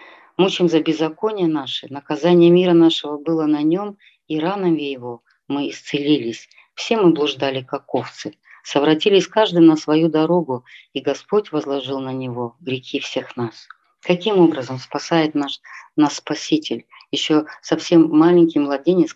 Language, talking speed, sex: Russian, 135 wpm, female